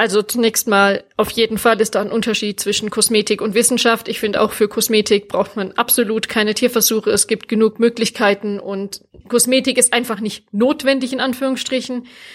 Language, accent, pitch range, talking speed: German, German, 210-240 Hz, 175 wpm